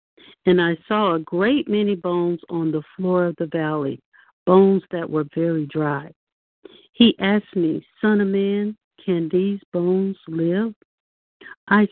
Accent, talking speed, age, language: American, 145 wpm, 60-79, English